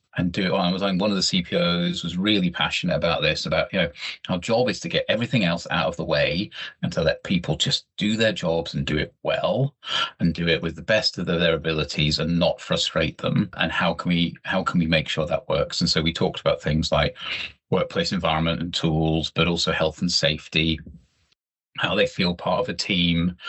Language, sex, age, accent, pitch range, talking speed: English, male, 30-49, British, 80-105 Hz, 225 wpm